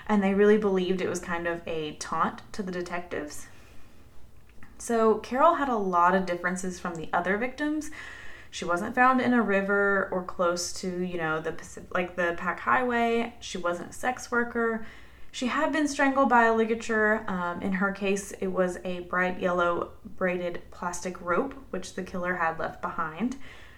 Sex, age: female, 20-39